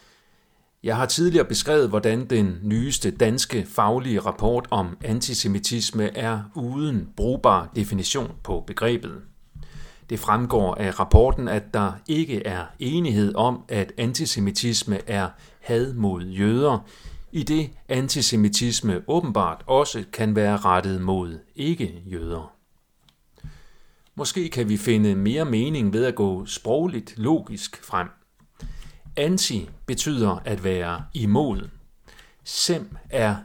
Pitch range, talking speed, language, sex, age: 100-130 Hz, 115 wpm, Danish, male, 40-59